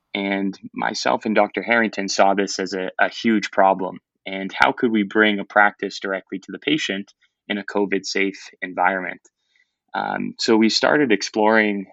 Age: 20-39